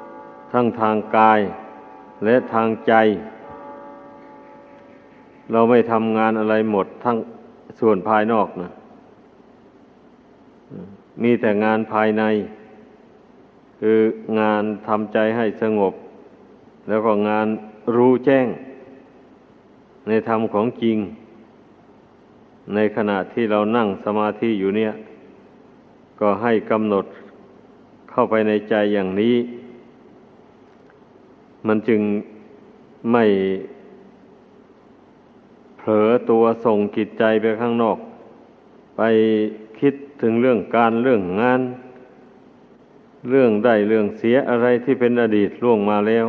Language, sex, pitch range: Thai, male, 105-115 Hz